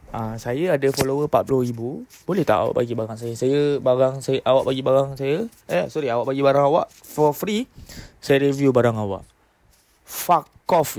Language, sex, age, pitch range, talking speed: Malay, male, 20-39, 125-155 Hz, 175 wpm